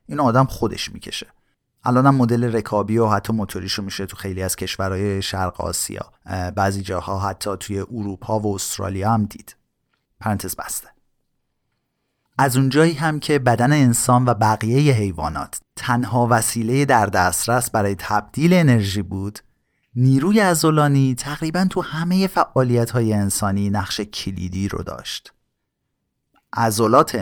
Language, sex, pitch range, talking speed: Persian, male, 100-135 Hz, 125 wpm